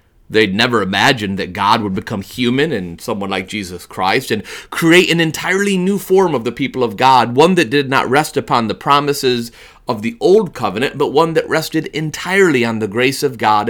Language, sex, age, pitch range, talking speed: English, male, 30-49, 120-165 Hz, 200 wpm